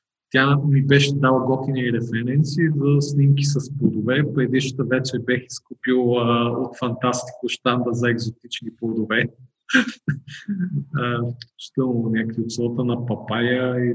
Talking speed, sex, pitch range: 115 wpm, male, 120-145 Hz